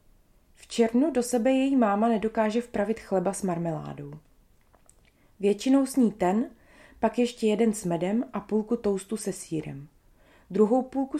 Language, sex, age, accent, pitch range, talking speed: Czech, female, 20-39, native, 180-230 Hz, 140 wpm